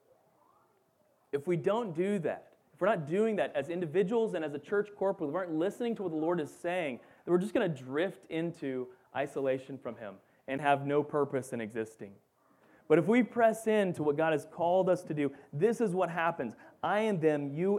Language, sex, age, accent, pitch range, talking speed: English, male, 30-49, American, 115-165 Hz, 215 wpm